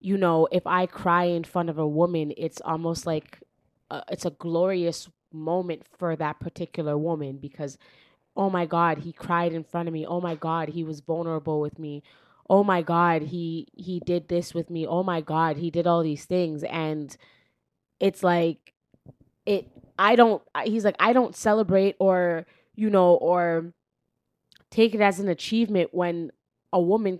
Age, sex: 20-39, female